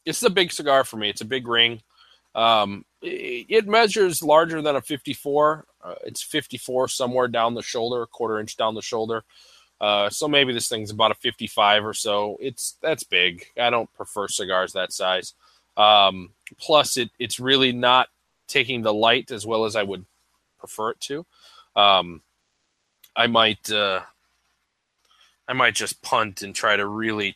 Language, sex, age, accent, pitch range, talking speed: English, male, 20-39, American, 105-140 Hz, 170 wpm